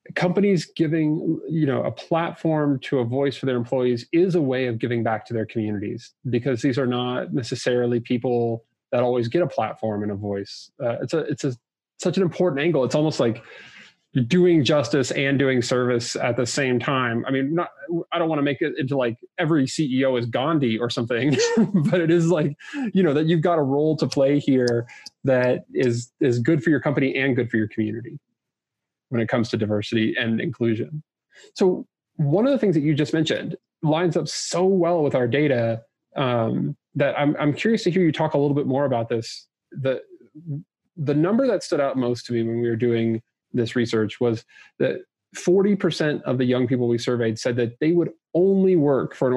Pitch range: 120-165 Hz